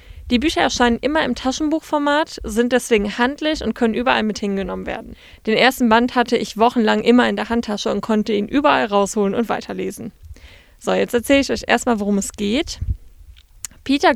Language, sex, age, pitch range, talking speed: German, female, 20-39, 205-255 Hz, 180 wpm